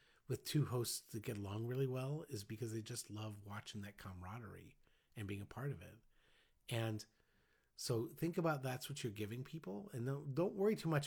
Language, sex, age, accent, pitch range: Chinese, male, 40-59, American, 105-135 Hz